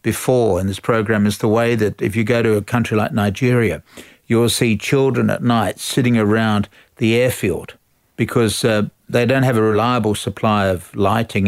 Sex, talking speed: male, 185 wpm